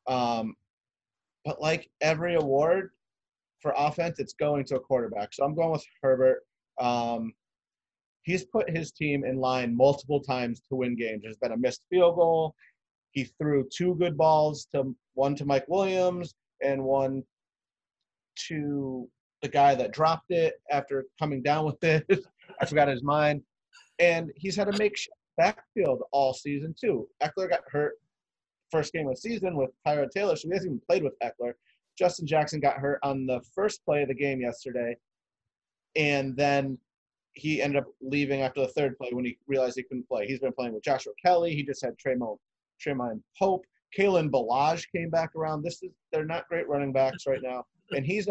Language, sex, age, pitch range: English, male, 30-49, 130-165 Hz